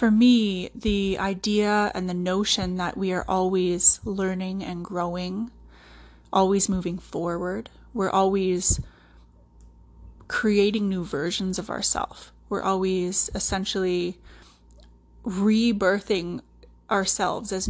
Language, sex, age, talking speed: English, female, 20-39, 100 wpm